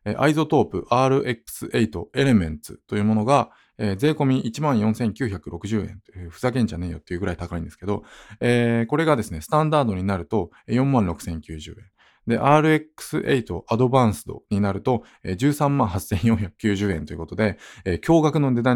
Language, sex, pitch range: Japanese, male, 95-130 Hz